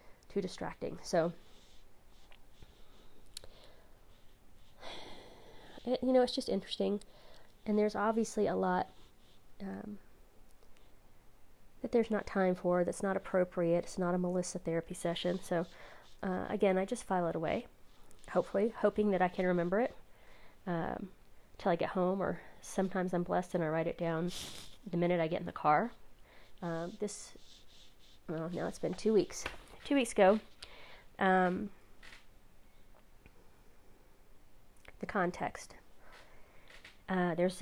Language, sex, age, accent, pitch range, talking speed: English, female, 30-49, American, 175-210 Hz, 130 wpm